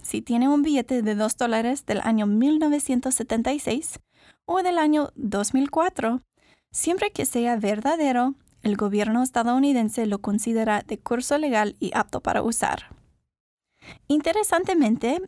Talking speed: 120 wpm